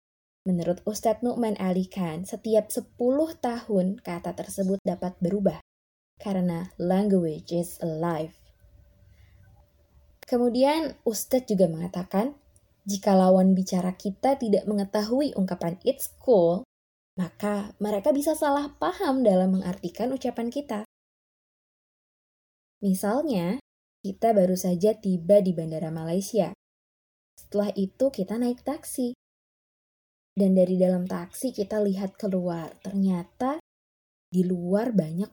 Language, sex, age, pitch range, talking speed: Indonesian, female, 20-39, 180-235 Hz, 105 wpm